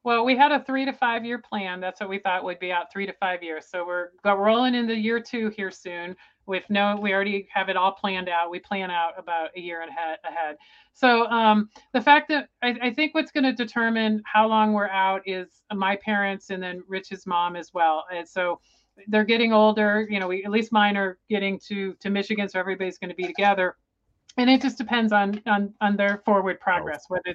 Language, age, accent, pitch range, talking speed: English, 40-59, American, 190-225 Hz, 230 wpm